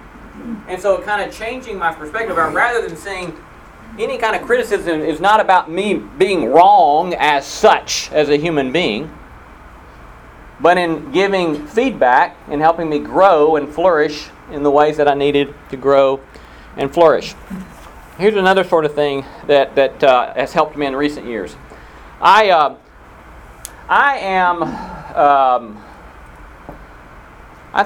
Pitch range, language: 135-175 Hz, English